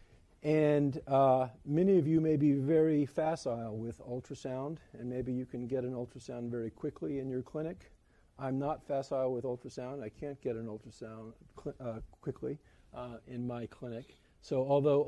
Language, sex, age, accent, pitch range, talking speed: English, male, 50-69, American, 115-150 Hz, 165 wpm